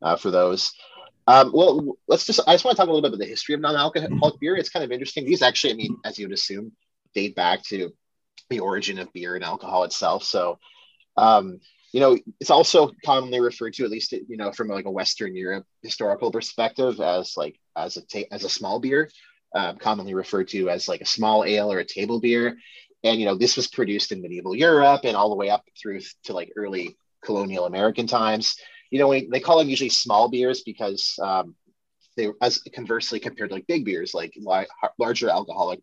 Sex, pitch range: male, 105-140 Hz